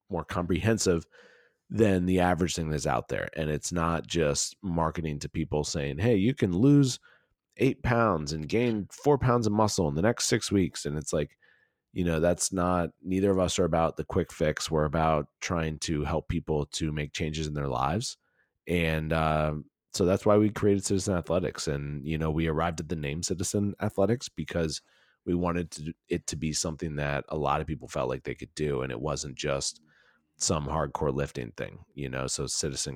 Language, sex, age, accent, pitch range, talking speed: English, male, 30-49, American, 75-90 Hz, 200 wpm